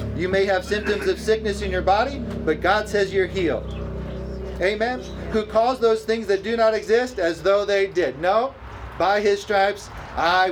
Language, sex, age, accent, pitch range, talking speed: English, male, 40-59, American, 190-240 Hz, 185 wpm